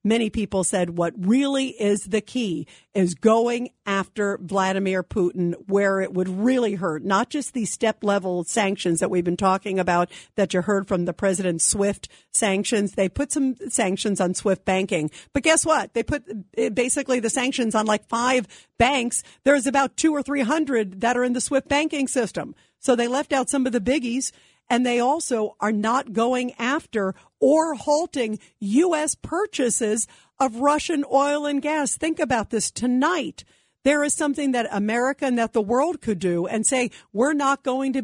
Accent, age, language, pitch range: American, 50-69, English, 205-280 Hz